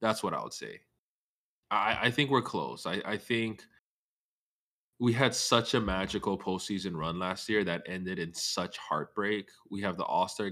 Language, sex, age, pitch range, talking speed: English, male, 20-39, 85-110 Hz, 175 wpm